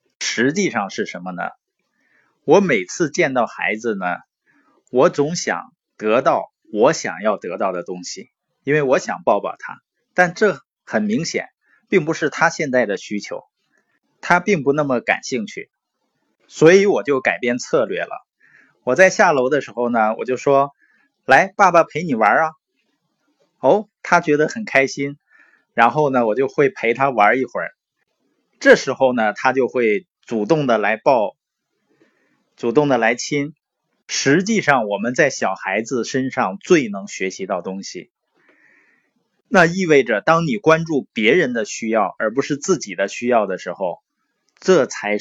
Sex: male